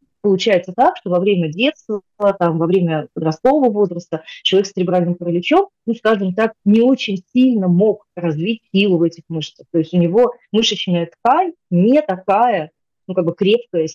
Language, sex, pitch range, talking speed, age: Russian, female, 165-210 Hz, 170 wpm, 30-49